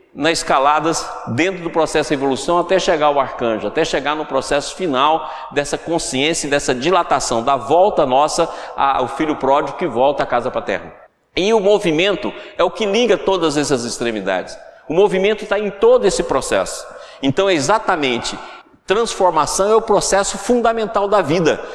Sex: male